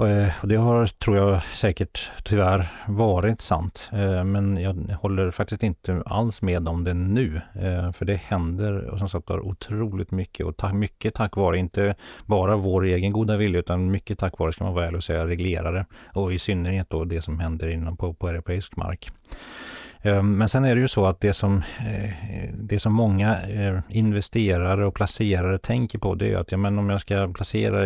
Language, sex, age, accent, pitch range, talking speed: Swedish, male, 40-59, native, 90-105 Hz, 185 wpm